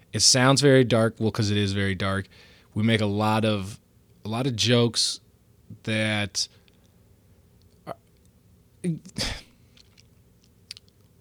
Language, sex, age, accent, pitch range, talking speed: English, male, 20-39, American, 100-115 Hz, 105 wpm